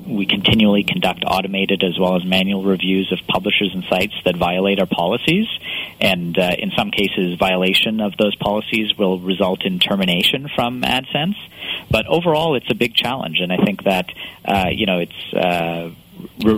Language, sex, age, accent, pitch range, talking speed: English, male, 40-59, American, 90-105 Hz, 175 wpm